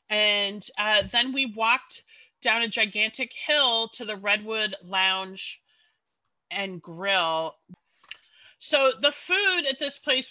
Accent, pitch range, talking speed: American, 200-285 Hz, 120 wpm